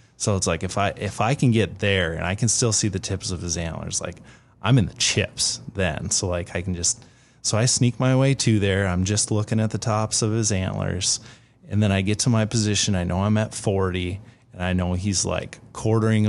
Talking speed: 240 wpm